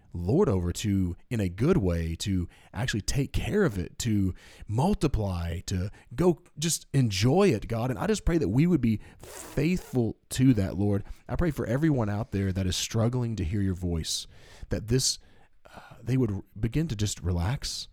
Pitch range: 90-115 Hz